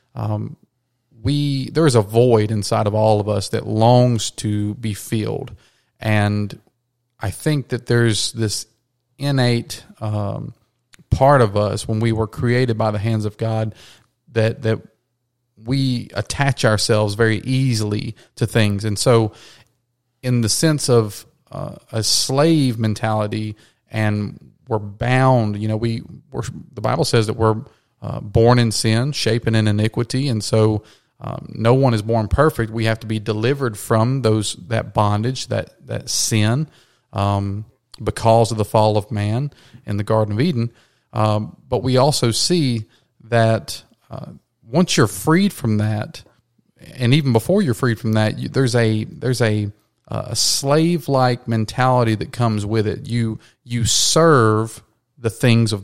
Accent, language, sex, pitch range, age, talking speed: American, English, male, 110-125 Hz, 30-49, 155 wpm